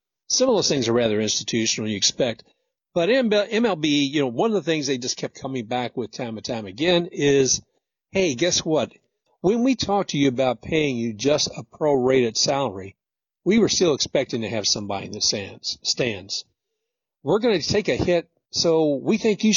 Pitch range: 125-175 Hz